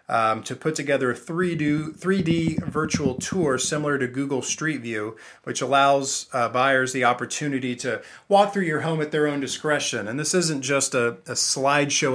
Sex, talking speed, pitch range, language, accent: male, 180 wpm, 120-150 Hz, English, American